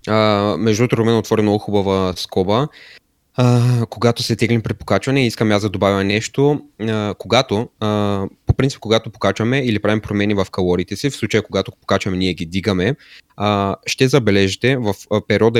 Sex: male